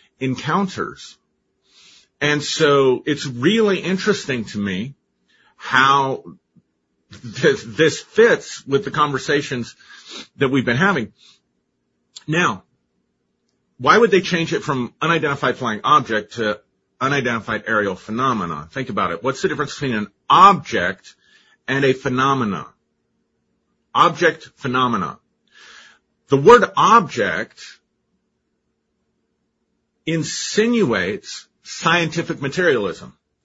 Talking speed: 95 wpm